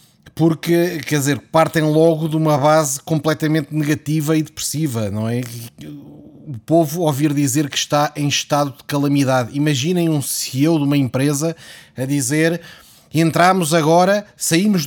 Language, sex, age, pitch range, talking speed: Portuguese, male, 20-39, 140-170 Hz, 140 wpm